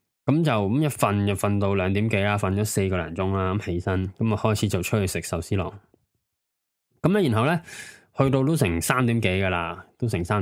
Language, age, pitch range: Chinese, 20-39, 95-125 Hz